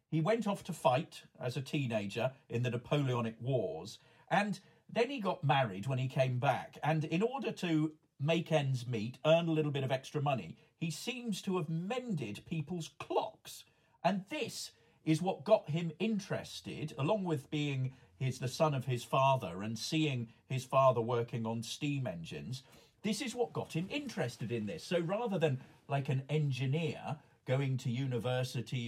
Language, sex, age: English, male, 50-69